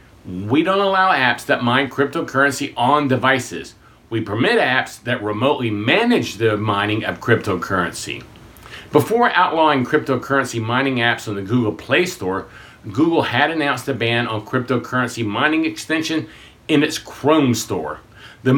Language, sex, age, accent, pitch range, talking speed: English, male, 50-69, American, 125-165 Hz, 140 wpm